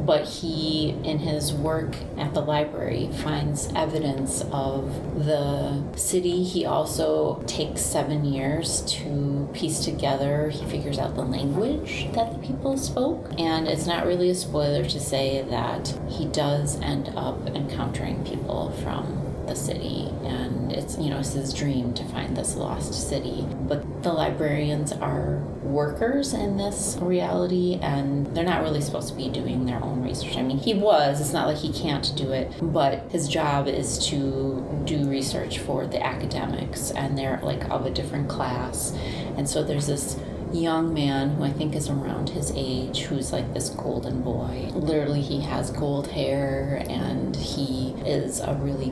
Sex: female